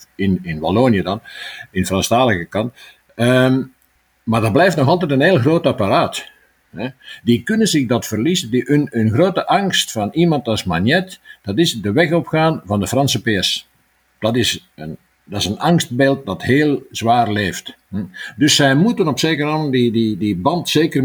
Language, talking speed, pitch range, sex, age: Dutch, 175 wpm, 115-160 Hz, male, 50-69